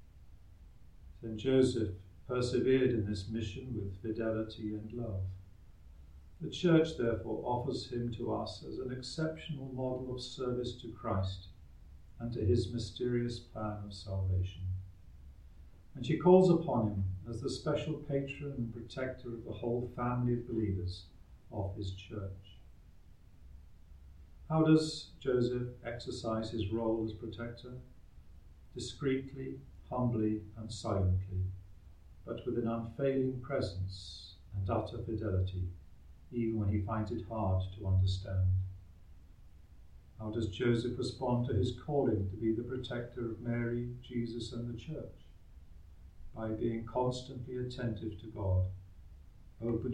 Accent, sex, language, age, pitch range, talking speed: British, male, English, 50-69, 95-120 Hz, 125 wpm